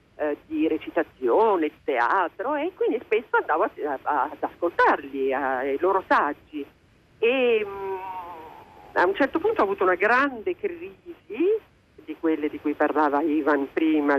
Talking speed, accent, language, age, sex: 125 wpm, native, Italian, 50-69, female